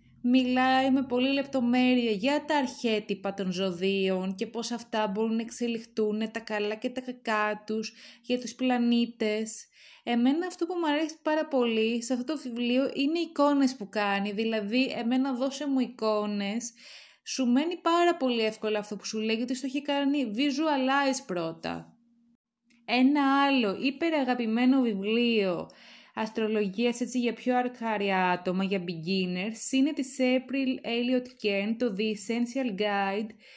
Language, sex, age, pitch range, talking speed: Greek, female, 20-39, 220-265 Hz, 145 wpm